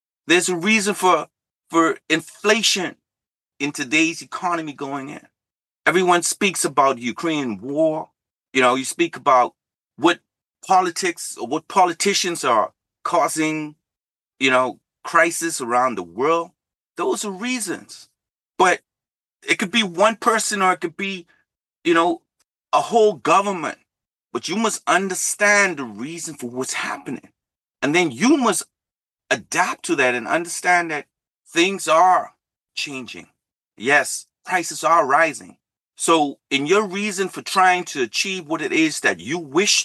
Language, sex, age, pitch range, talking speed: English, male, 30-49, 145-200 Hz, 140 wpm